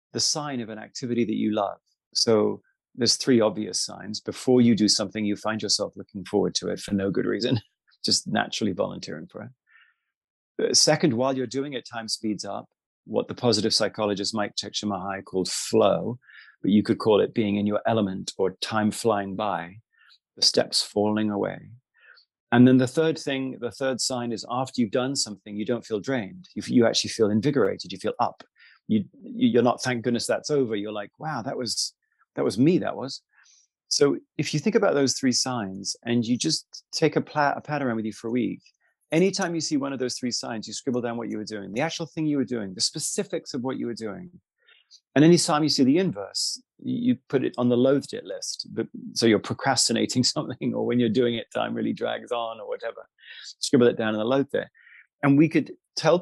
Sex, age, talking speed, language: male, 30-49, 210 wpm, English